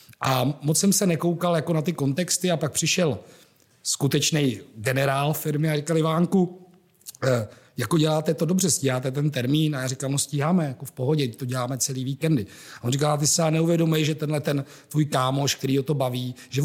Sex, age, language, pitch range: male, 40-59, Czech, 135-165 Hz